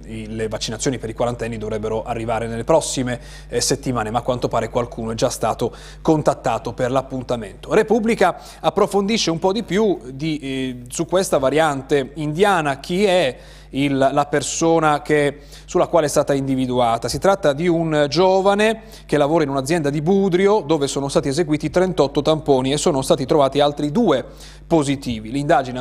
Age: 30-49